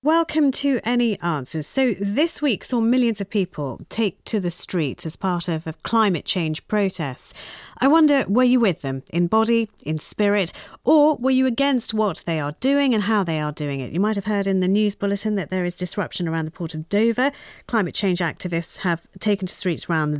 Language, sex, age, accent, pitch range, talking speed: English, female, 40-59, British, 175-230 Hz, 210 wpm